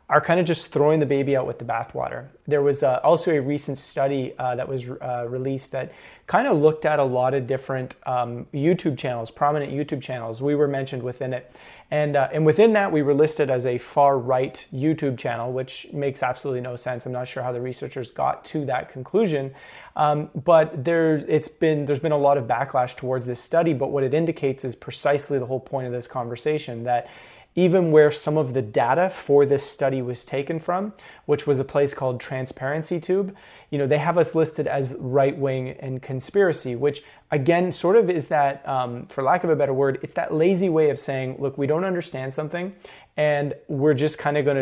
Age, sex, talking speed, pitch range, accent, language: 30-49, male, 210 wpm, 130-155 Hz, American, English